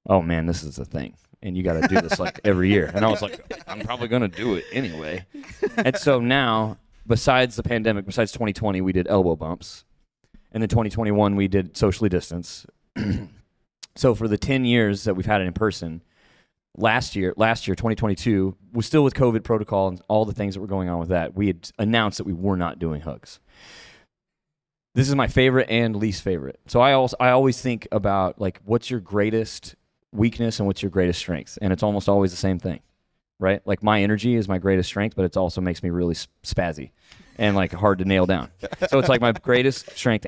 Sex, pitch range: male, 90-115 Hz